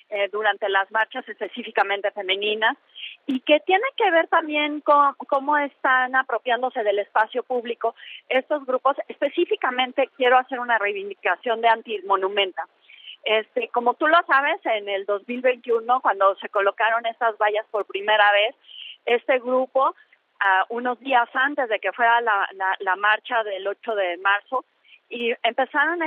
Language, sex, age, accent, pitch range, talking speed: Spanish, female, 30-49, Mexican, 210-270 Hz, 145 wpm